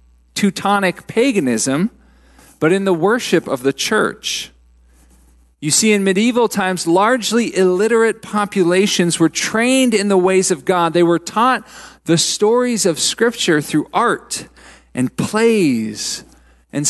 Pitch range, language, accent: 145-215 Hz, English, American